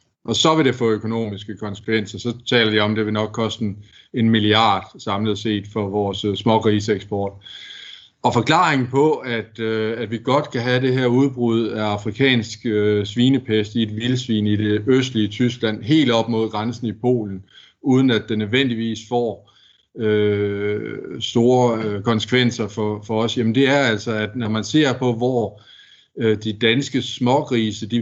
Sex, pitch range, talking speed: male, 105-125 Hz, 165 wpm